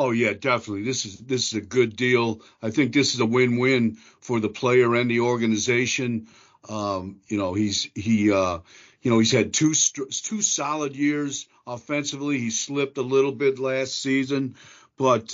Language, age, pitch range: English, 50-69, 110-135 Hz